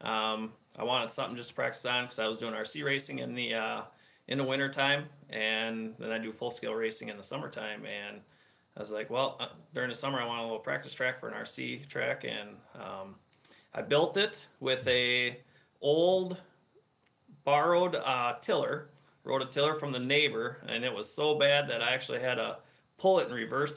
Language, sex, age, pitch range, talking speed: English, male, 30-49, 115-150 Hz, 205 wpm